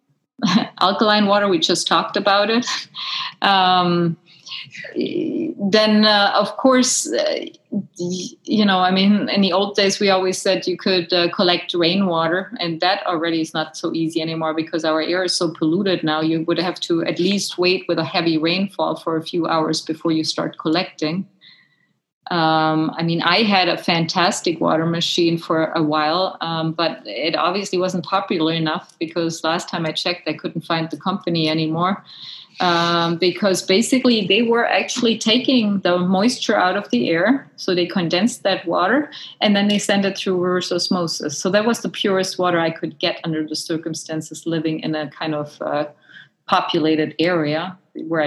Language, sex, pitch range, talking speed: English, female, 160-195 Hz, 175 wpm